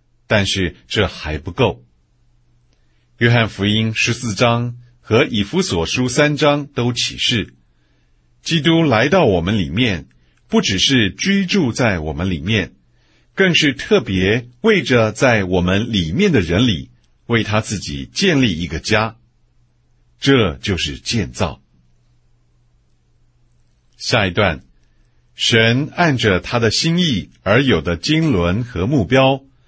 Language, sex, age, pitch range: English, male, 50-69, 85-125 Hz